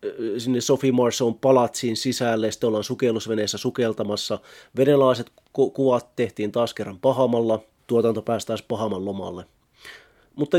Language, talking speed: Finnish, 115 wpm